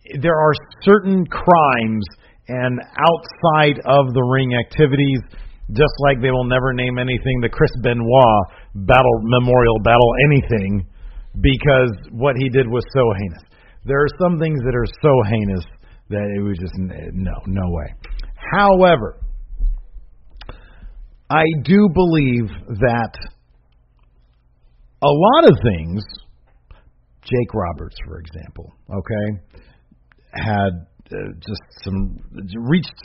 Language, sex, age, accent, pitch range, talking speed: English, male, 50-69, American, 95-130 Hz, 115 wpm